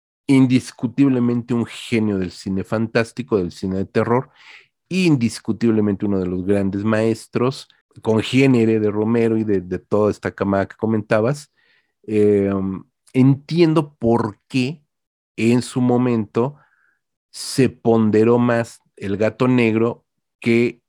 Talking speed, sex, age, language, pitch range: 120 wpm, male, 40-59, Spanish, 105-130 Hz